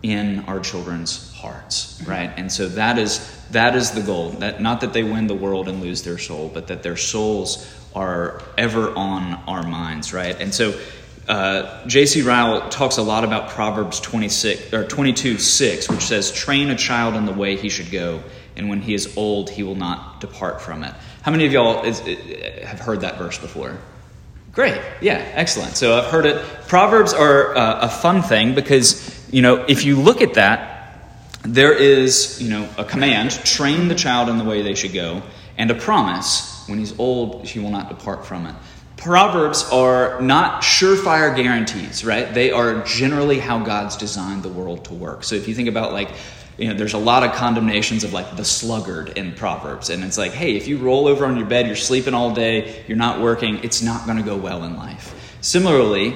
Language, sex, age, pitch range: English, male, 30-49, 100-125 Hz